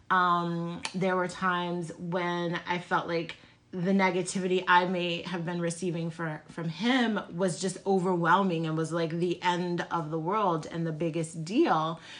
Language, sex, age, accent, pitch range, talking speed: English, female, 30-49, American, 170-195 Hz, 155 wpm